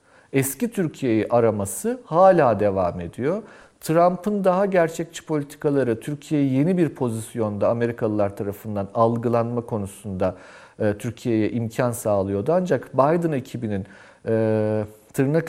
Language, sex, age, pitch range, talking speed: Turkish, male, 40-59, 115-145 Hz, 105 wpm